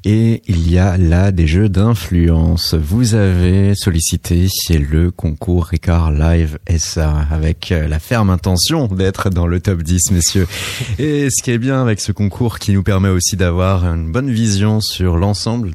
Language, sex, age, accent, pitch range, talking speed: French, male, 30-49, French, 85-110 Hz, 170 wpm